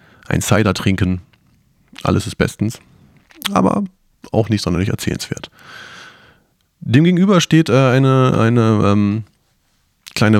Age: 30-49